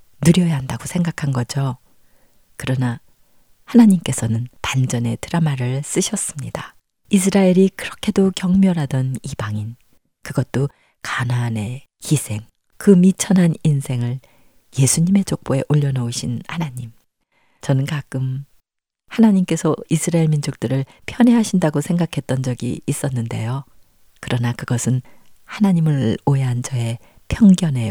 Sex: female